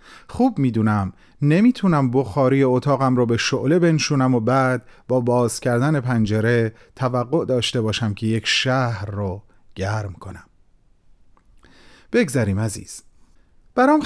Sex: male